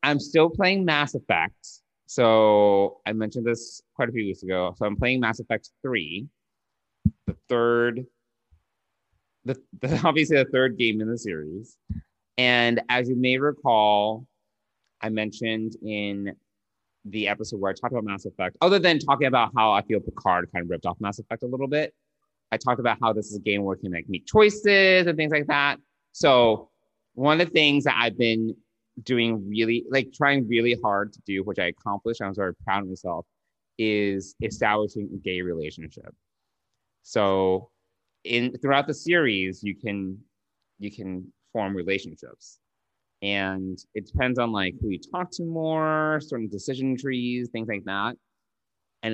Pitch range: 100-130 Hz